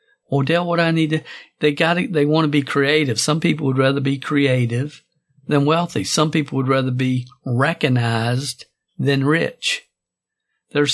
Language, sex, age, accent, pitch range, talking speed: English, male, 50-69, American, 135-155 Hz, 160 wpm